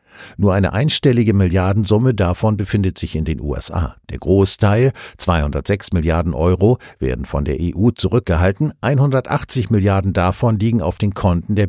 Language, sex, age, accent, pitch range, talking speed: German, male, 60-79, German, 90-120 Hz, 145 wpm